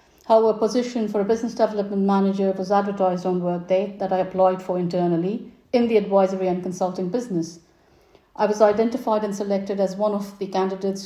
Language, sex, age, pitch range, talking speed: English, female, 50-69, 190-215 Hz, 180 wpm